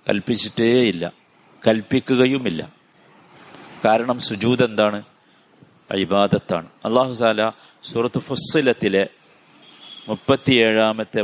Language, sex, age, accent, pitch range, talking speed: Malayalam, male, 50-69, native, 110-145 Hz, 60 wpm